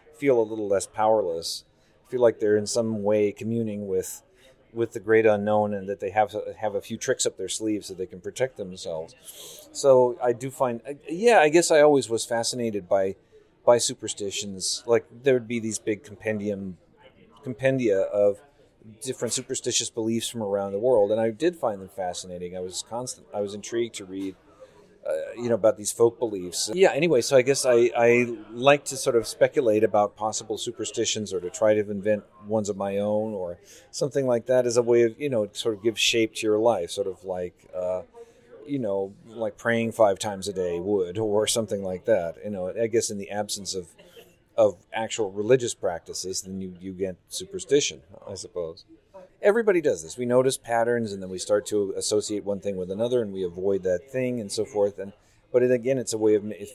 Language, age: Swedish, 30-49